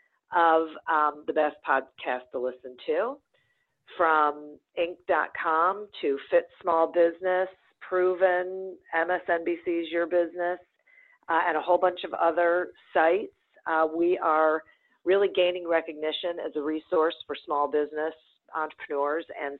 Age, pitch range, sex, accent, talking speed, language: 50-69, 150-190 Hz, female, American, 120 wpm, English